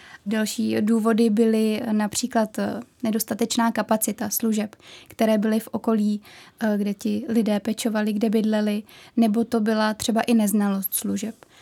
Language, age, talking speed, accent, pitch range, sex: Czech, 20-39, 125 wpm, native, 220-235 Hz, female